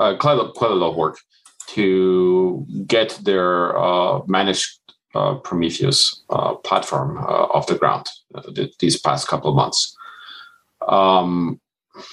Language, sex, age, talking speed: English, male, 40-59, 135 wpm